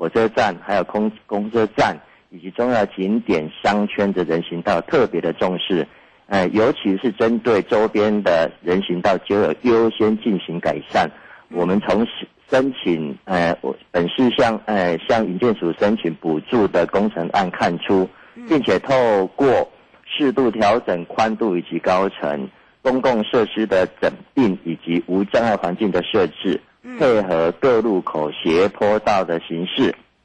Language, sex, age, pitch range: Chinese, male, 50-69, 85-110 Hz